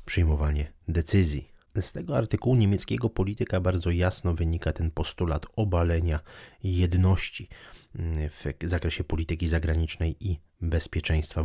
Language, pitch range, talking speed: Polish, 80-95 Hz, 105 wpm